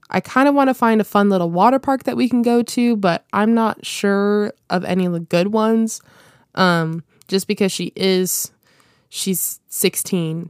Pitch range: 175-215 Hz